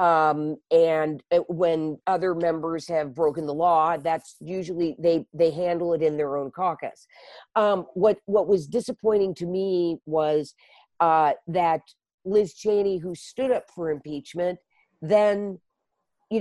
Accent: American